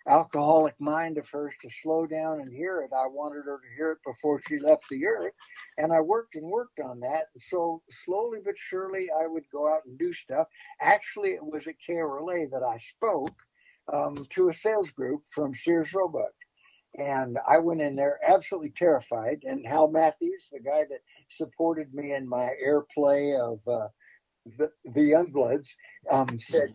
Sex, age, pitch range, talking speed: male, 60-79, 145-190 Hz, 180 wpm